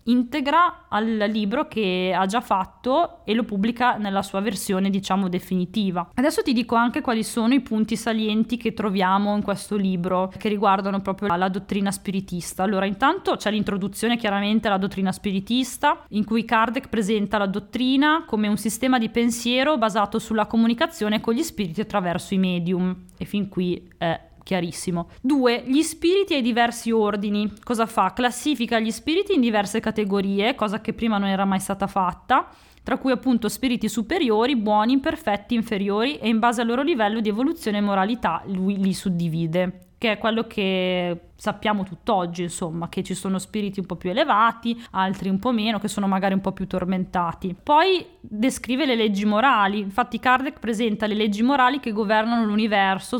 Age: 20-39